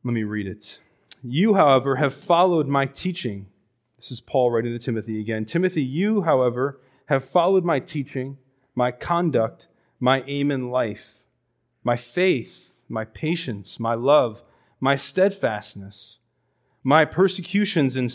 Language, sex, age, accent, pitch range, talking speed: English, male, 30-49, American, 110-150 Hz, 135 wpm